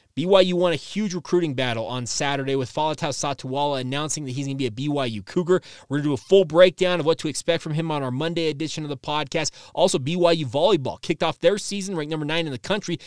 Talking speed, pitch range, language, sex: 245 wpm, 140-170 Hz, English, male